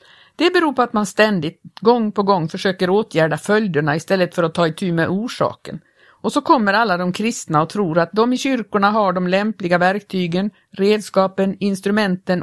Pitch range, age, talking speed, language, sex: 175-220 Hz, 60-79, 185 wpm, Swedish, female